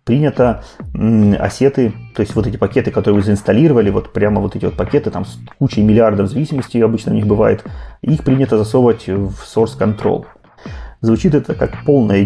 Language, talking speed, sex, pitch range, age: Russian, 170 wpm, male, 105-130 Hz, 30-49